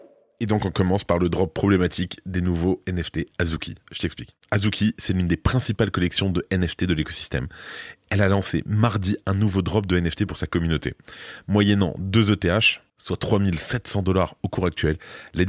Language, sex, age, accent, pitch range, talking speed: French, male, 20-39, French, 85-100 Hz, 180 wpm